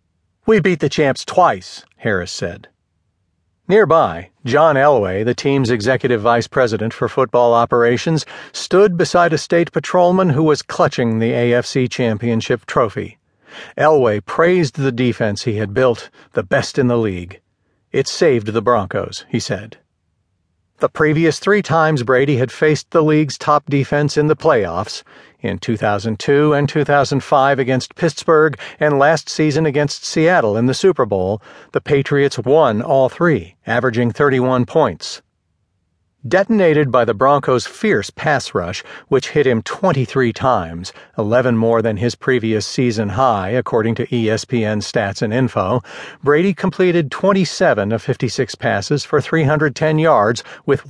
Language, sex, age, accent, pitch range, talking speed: English, male, 50-69, American, 115-150 Hz, 140 wpm